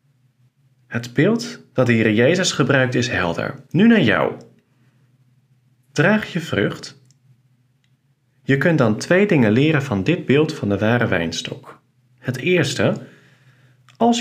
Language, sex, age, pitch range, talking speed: Dutch, male, 40-59, 125-145 Hz, 130 wpm